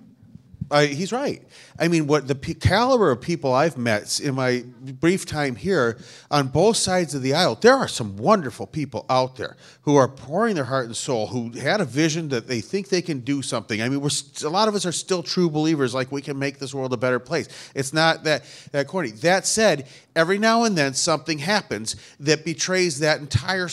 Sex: male